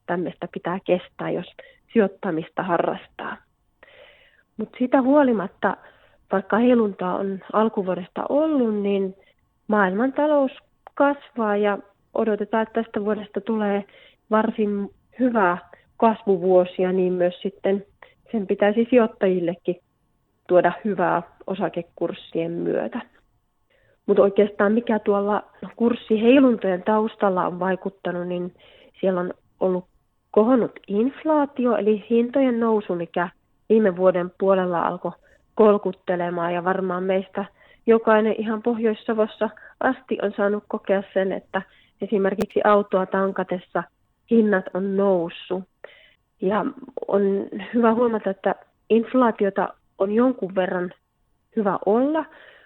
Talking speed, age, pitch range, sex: 100 wpm, 30-49, 185-225 Hz, female